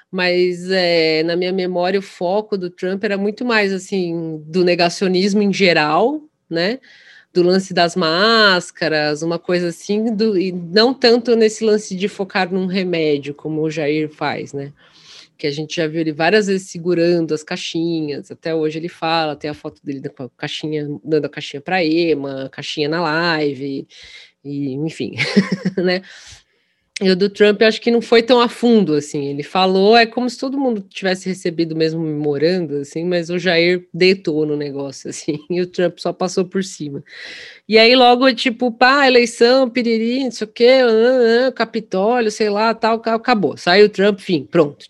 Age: 20-39